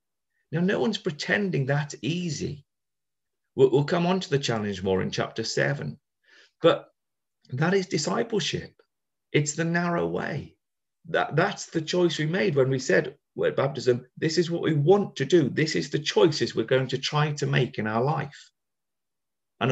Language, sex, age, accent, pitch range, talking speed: English, male, 40-59, British, 125-165 Hz, 175 wpm